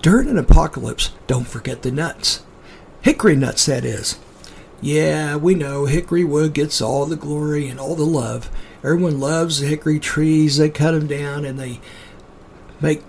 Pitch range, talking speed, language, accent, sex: 145-180 Hz, 165 wpm, English, American, male